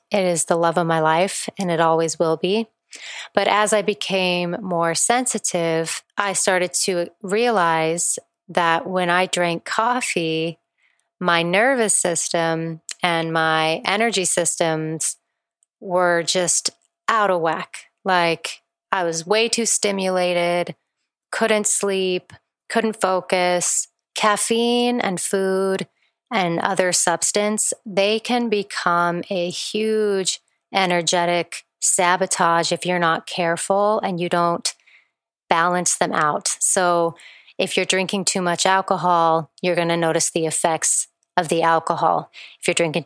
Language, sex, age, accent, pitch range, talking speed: English, female, 30-49, American, 170-195 Hz, 125 wpm